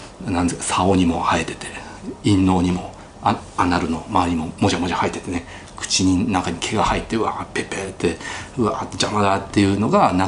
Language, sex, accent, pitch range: Japanese, male, native, 90-120 Hz